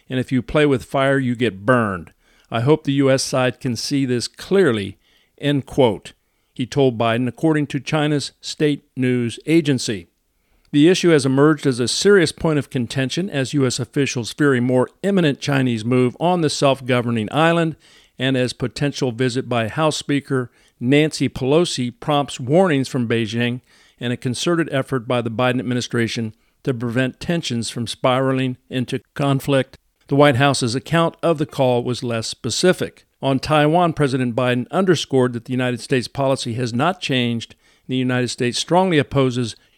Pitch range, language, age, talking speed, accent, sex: 120-145 Hz, English, 50-69, 165 wpm, American, male